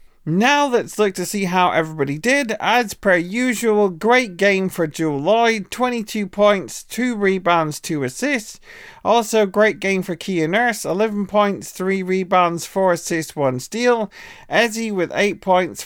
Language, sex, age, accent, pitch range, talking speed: English, male, 40-59, British, 170-215 Hz, 150 wpm